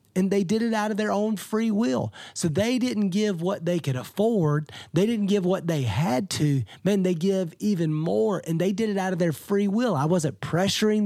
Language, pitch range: English, 145-205 Hz